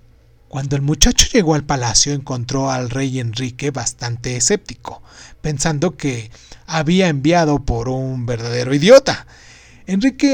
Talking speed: 120 wpm